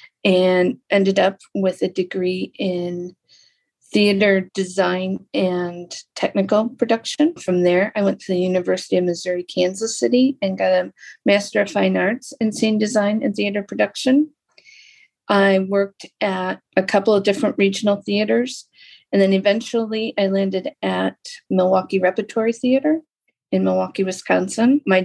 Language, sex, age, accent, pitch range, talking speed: English, female, 40-59, American, 185-210 Hz, 140 wpm